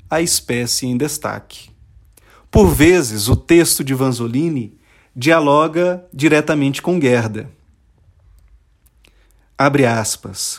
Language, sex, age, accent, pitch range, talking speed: Portuguese, male, 40-59, Brazilian, 110-160 Hz, 90 wpm